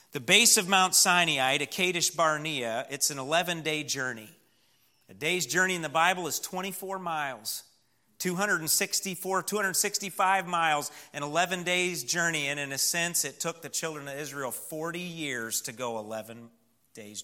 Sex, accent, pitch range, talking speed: male, American, 130-165 Hz, 145 wpm